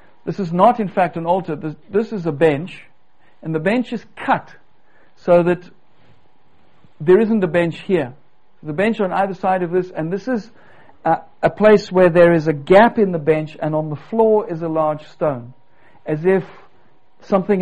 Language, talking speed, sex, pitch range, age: Danish, 190 wpm, male, 140-175 Hz, 60-79